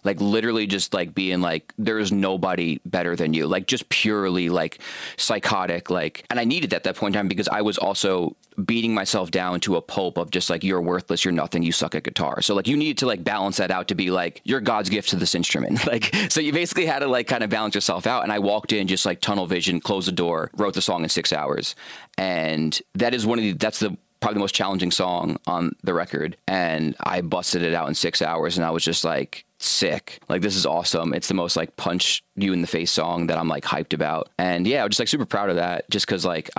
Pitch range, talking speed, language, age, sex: 85-100 Hz, 255 wpm, English, 30-49, male